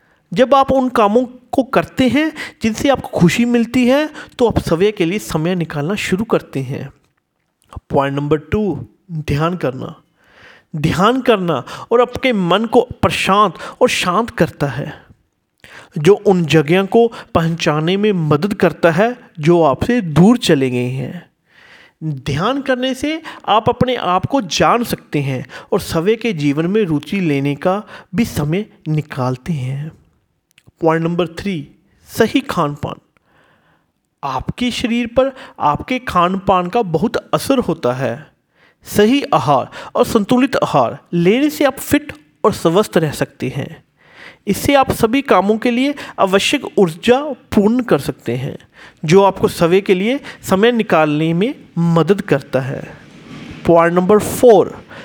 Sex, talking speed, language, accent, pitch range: male, 140 wpm, Hindi, native, 160-245 Hz